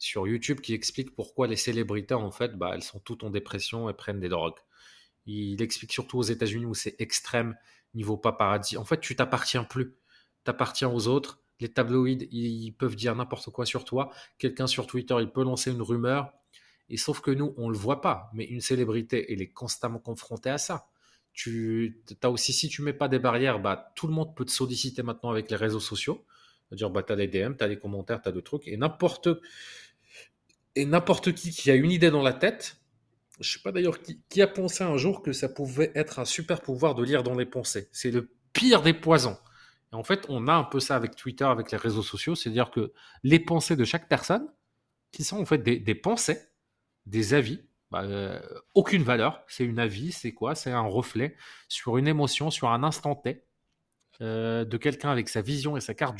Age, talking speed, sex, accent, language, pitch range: 20-39, 220 wpm, male, French, French, 115-150 Hz